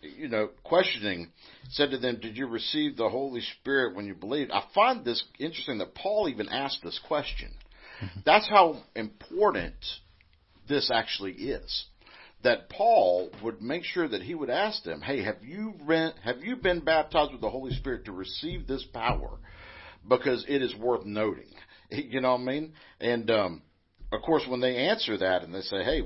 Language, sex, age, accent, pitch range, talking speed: English, male, 50-69, American, 100-130 Hz, 180 wpm